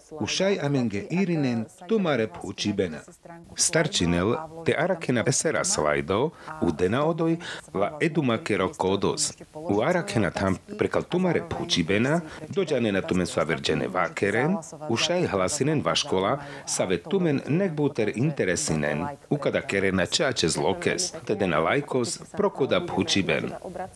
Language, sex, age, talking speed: Slovak, male, 40-59, 130 wpm